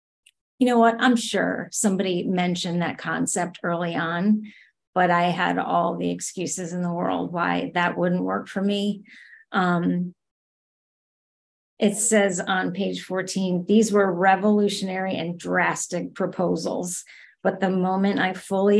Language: English